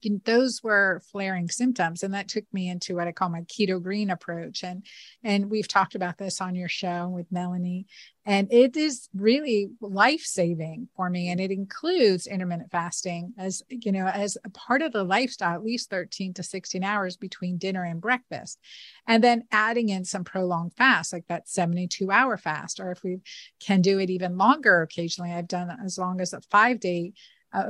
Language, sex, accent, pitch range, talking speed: English, female, American, 180-225 Hz, 195 wpm